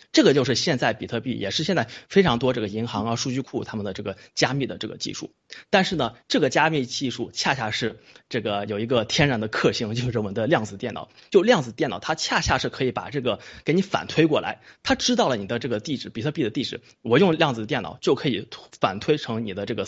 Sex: male